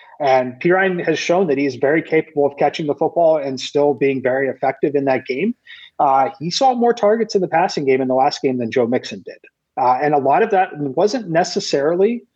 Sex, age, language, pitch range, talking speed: male, 30-49, English, 135-165 Hz, 220 wpm